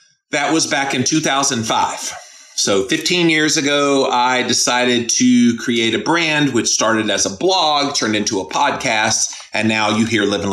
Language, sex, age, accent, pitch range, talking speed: English, male, 30-49, American, 100-125 Hz, 165 wpm